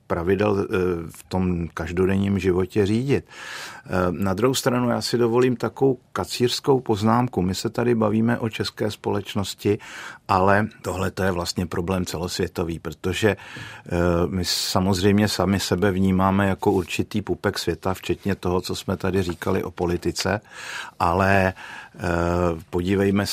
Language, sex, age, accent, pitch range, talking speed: Czech, male, 50-69, native, 90-105 Hz, 125 wpm